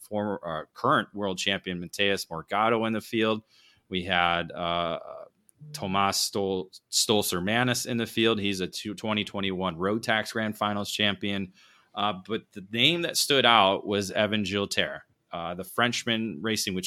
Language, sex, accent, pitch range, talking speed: English, male, American, 95-115 Hz, 155 wpm